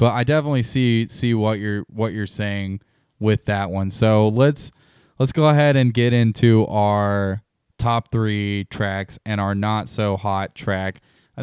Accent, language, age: American, English, 10-29